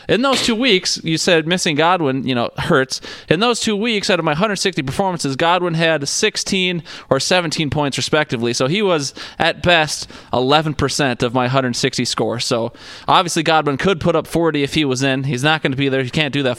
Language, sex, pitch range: English, male, 130-165 Hz